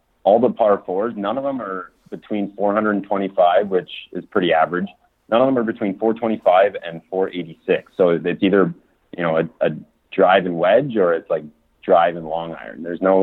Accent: American